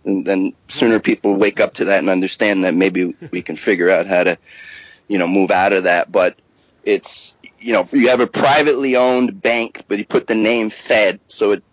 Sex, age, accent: male, 30-49, American